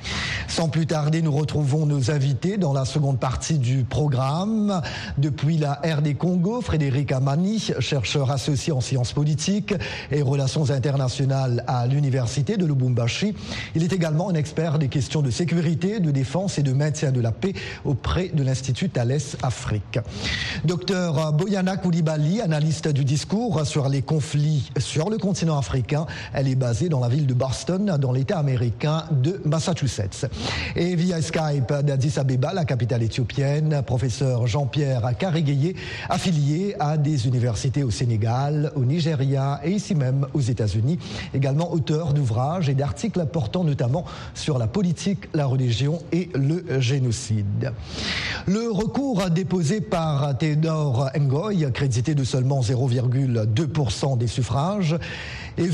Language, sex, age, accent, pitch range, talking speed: French, male, 40-59, French, 130-170 Hz, 140 wpm